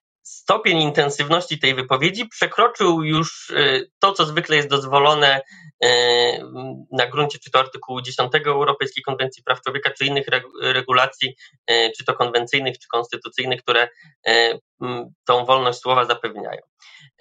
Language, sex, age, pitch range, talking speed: Polish, male, 20-39, 130-165 Hz, 120 wpm